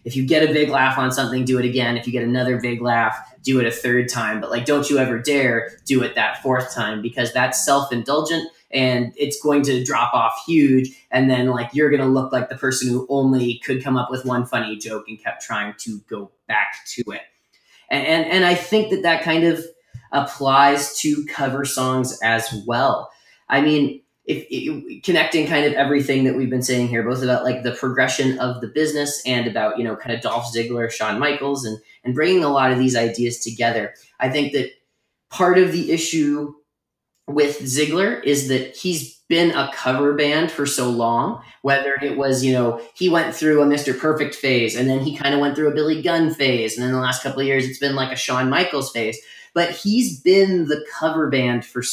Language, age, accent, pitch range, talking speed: English, 20-39, American, 125-150 Hz, 215 wpm